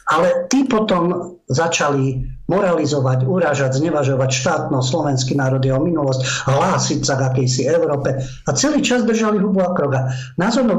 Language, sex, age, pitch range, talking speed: Slovak, male, 50-69, 125-165 Hz, 145 wpm